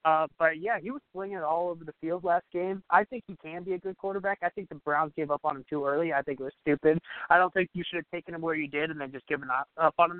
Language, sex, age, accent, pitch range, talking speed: English, male, 20-39, American, 155-185 Hz, 320 wpm